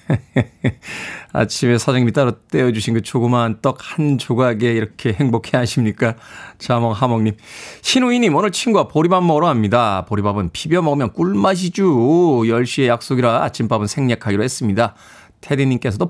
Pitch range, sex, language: 115-170 Hz, male, Korean